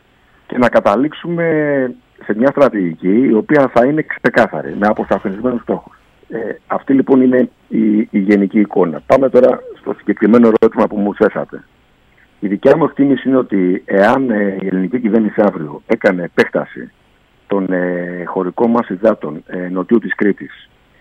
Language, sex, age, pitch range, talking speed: Greek, male, 50-69, 90-115 Hz, 140 wpm